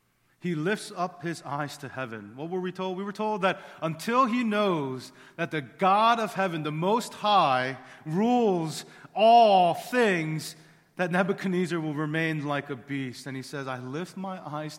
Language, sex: English, male